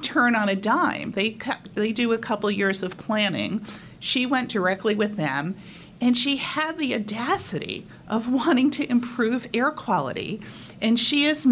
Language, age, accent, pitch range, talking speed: English, 50-69, American, 165-235 Hz, 165 wpm